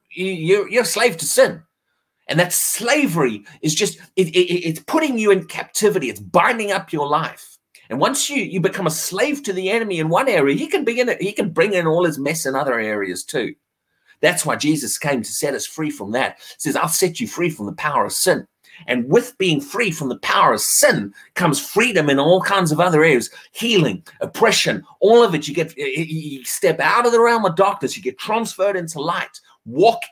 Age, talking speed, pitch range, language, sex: 30-49, 215 wpm, 150-230 Hz, English, male